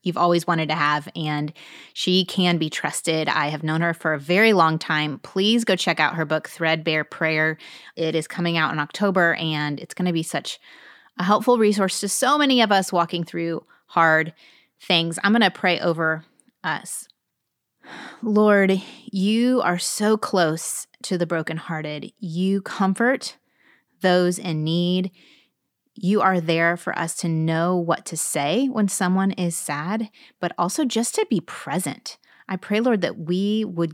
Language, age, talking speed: English, 20-39, 170 wpm